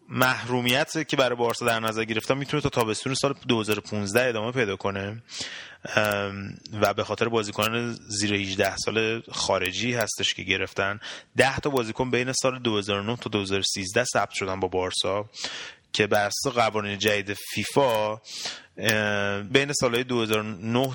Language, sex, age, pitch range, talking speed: Persian, male, 30-49, 100-120 Hz, 130 wpm